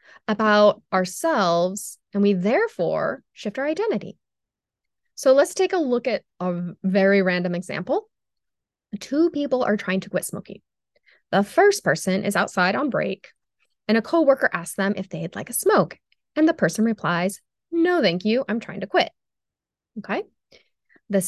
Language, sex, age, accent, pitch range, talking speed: English, female, 20-39, American, 185-240 Hz, 160 wpm